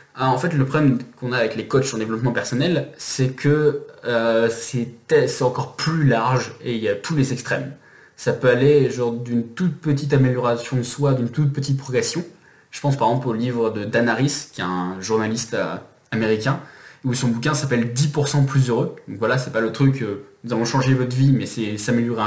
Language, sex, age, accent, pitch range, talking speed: French, male, 20-39, French, 115-145 Hz, 215 wpm